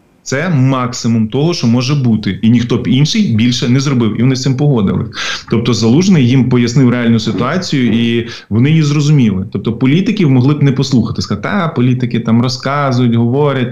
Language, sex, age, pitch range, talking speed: Ukrainian, male, 20-39, 115-140 Hz, 175 wpm